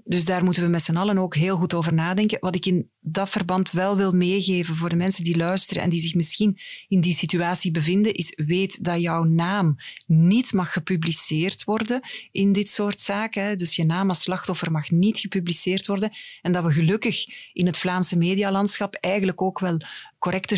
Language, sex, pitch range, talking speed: Dutch, female, 170-200 Hz, 195 wpm